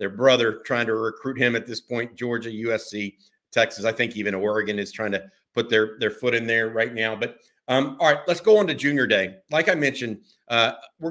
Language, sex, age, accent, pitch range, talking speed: English, male, 50-69, American, 120-155 Hz, 225 wpm